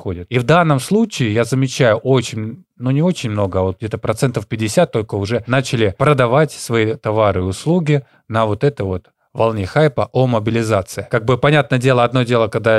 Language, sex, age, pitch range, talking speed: Russian, male, 20-39, 105-135 Hz, 185 wpm